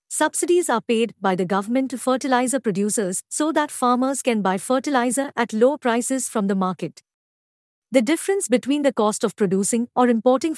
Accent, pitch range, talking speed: Indian, 195-270 Hz, 170 wpm